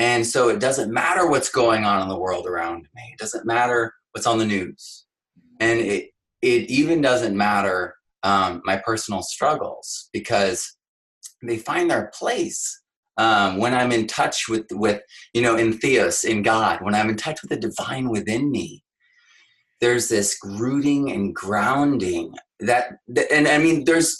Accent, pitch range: American, 115-180 Hz